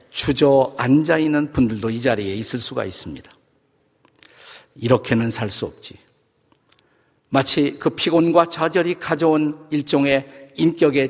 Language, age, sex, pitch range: Korean, 50-69, male, 120-155 Hz